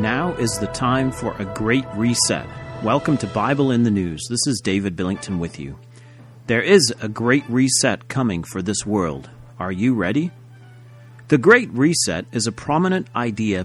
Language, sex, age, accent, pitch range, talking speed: English, male, 40-59, American, 110-135 Hz, 170 wpm